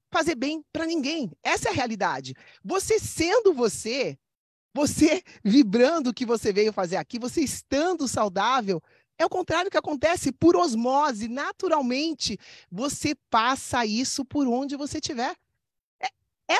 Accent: Brazilian